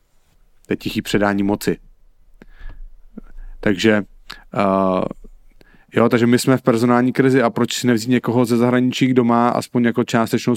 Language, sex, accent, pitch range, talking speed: English, male, Czech, 105-125 Hz, 130 wpm